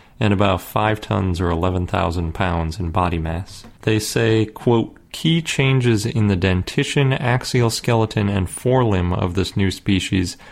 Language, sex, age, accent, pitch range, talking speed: English, male, 30-49, American, 90-115 Hz, 155 wpm